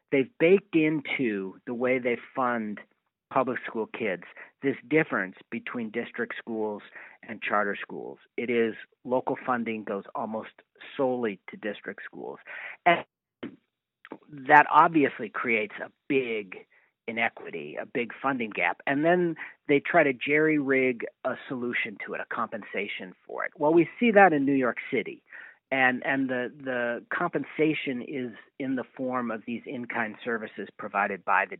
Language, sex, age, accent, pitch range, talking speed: English, male, 50-69, American, 120-165 Hz, 145 wpm